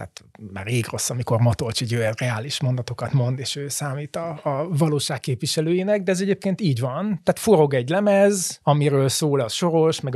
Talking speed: 185 wpm